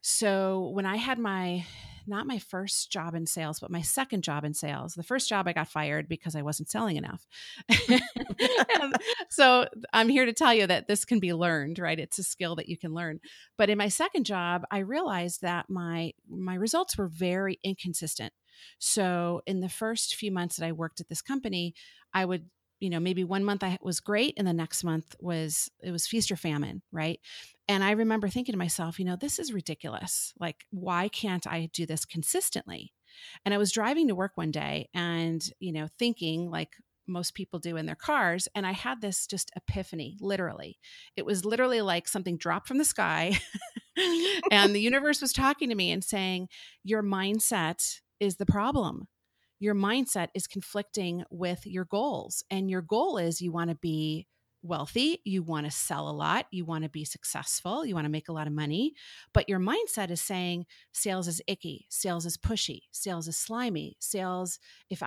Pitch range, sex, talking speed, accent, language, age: 170-210 Hz, female, 195 wpm, American, English, 40-59